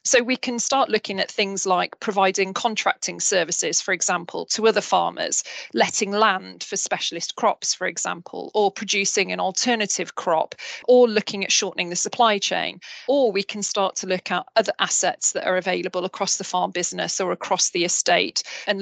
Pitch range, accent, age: 190-225 Hz, British, 40-59